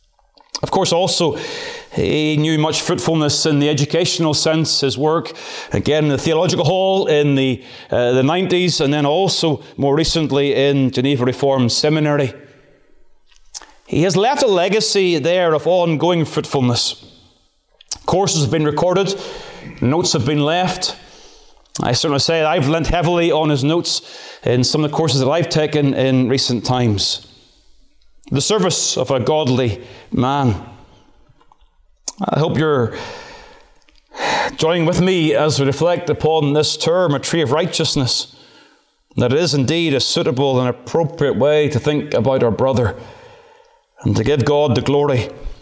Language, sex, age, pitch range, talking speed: English, male, 30-49, 135-165 Hz, 145 wpm